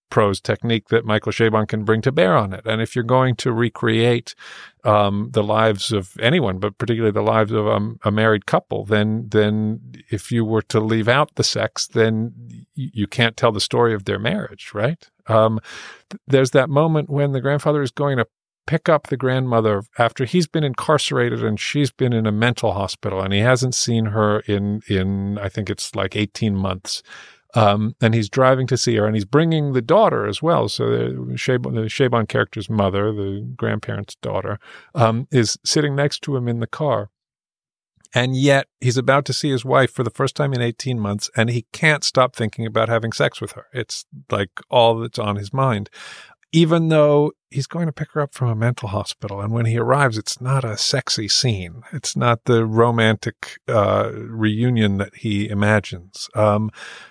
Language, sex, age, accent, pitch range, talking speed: English, male, 50-69, American, 105-130 Hz, 195 wpm